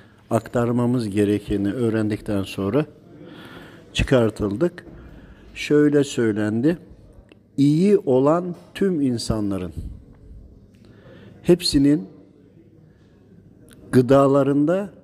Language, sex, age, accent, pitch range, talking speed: Turkish, male, 50-69, native, 105-140 Hz, 50 wpm